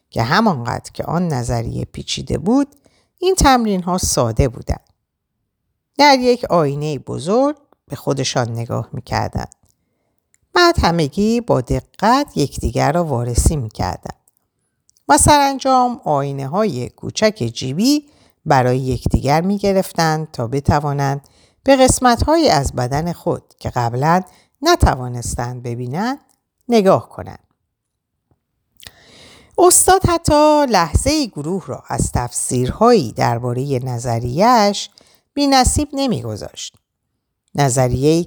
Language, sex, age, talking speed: Persian, female, 50-69, 105 wpm